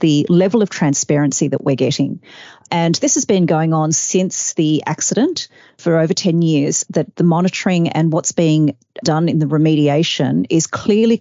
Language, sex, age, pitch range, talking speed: English, female, 40-59, 150-175 Hz, 170 wpm